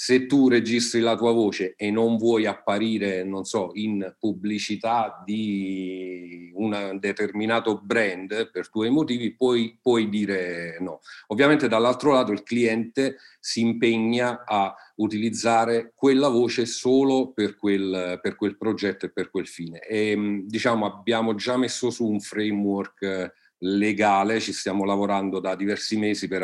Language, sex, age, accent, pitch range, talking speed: Italian, male, 40-59, native, 95-115 Hz, 135 wpm